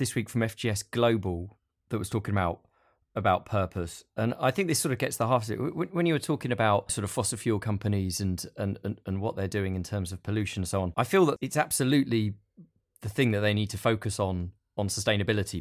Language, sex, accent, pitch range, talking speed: English, male, British, 95-120 Hz, 235 wpm